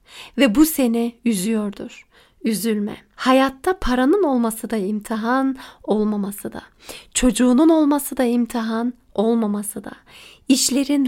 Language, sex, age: Turkish, female, 40-59